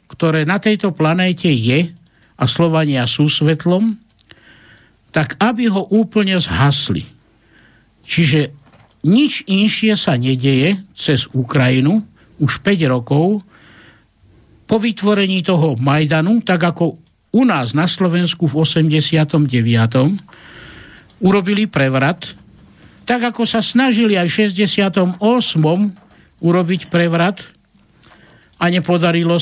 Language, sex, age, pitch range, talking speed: Slovak, male, 60-79, 140-200 Hz, 100 wpm